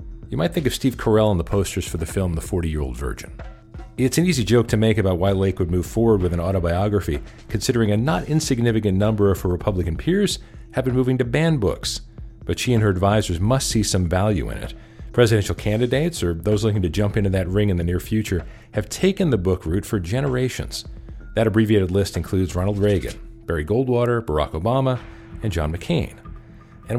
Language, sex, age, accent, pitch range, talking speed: English, male, 40-59, American, 95-125 Hz, 200 wpm